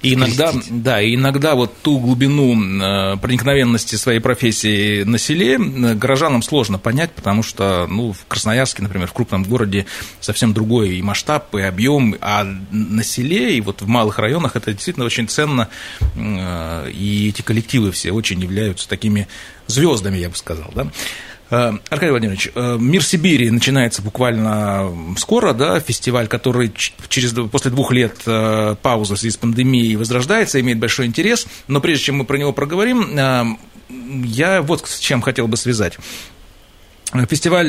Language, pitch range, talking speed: Russian, 105-135 Hz, 140 wpm